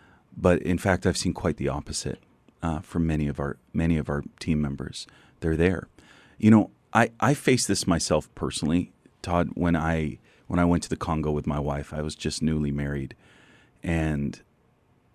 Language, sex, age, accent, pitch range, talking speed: English, male, 30-49, American, 75-85 Hz, 180 wpm